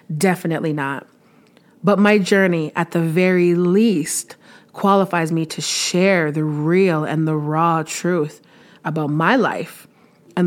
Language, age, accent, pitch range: English, 30-49, American, 160-195 Hz